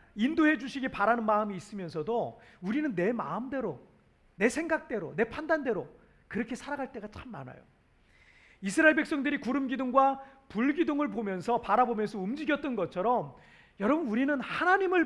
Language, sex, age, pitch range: Korean, male, 40-59, 220-285 Hz